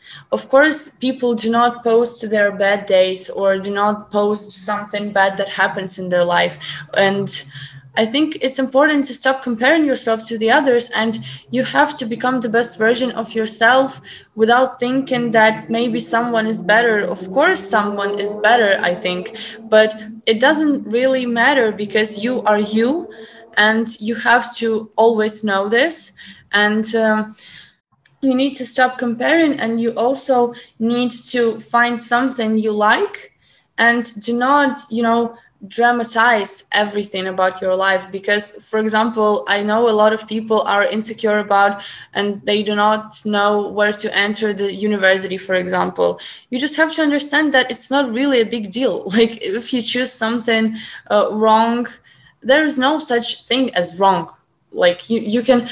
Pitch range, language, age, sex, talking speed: 210-245 Hz, English, 20-39, female, 165 wpm